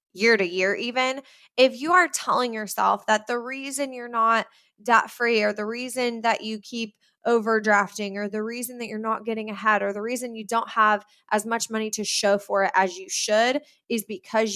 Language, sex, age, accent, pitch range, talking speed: English, female, 20-39, American, 215-280 Hz, 200 wpm